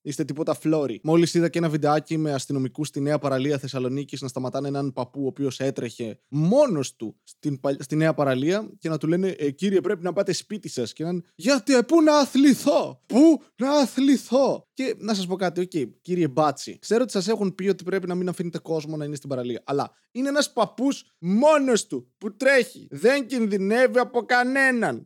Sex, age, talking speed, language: male, 20-39, 195 wpm, Greek